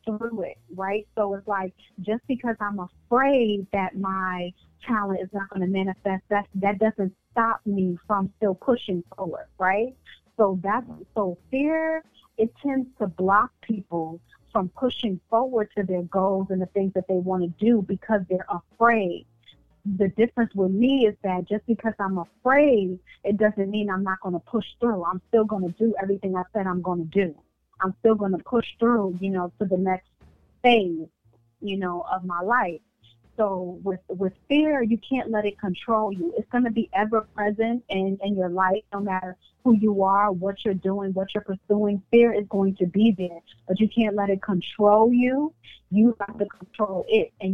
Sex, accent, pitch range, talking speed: female, American, 190-225 Hz, 190 wpm